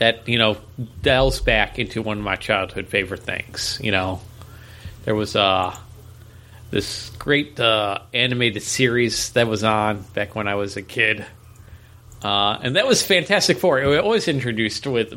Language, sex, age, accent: English, male, 40-59, American